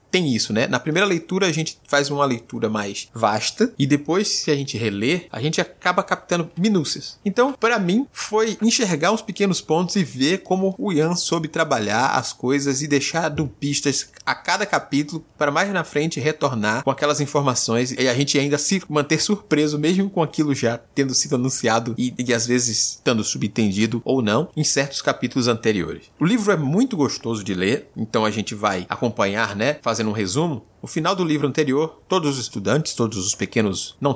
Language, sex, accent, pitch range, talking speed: Portuguese, male, Brazilian, 115-160 Hz, 190 wpm